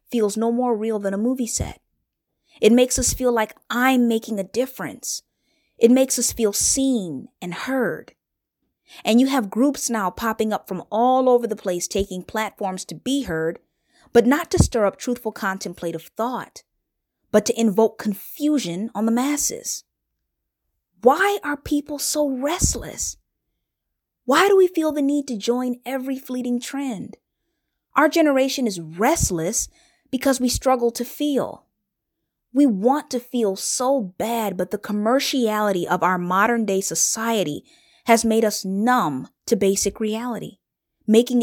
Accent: American